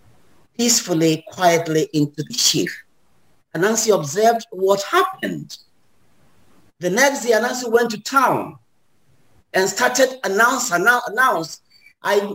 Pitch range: 155-250 Hz